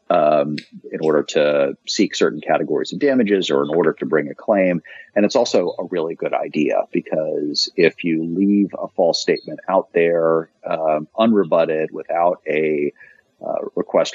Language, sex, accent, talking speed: English, male, American, 160 wpm